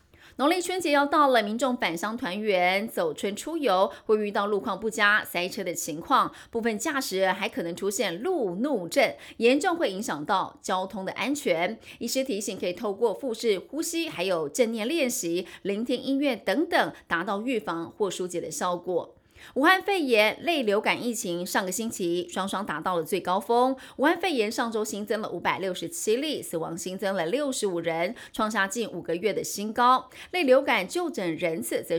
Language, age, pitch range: Chinese, 30-49, 185-265 Hz